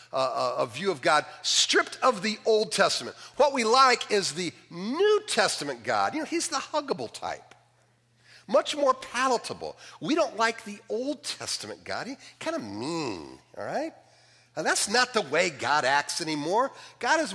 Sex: male